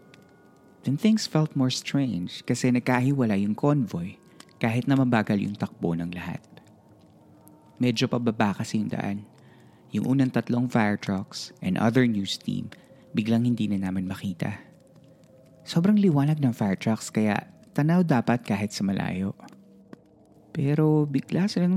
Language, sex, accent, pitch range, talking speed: Filipino, male, native, 105-135 Hz, 140 wpm